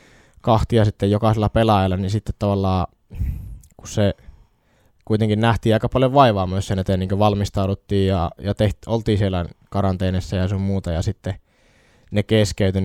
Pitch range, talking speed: 95-110 Hz, 155 wpm